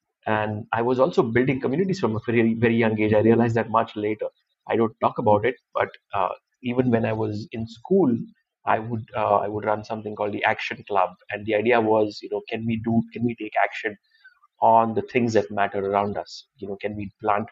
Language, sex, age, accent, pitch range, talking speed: English, male, 30-49, Indian, 105-120 Hz, 225 wpm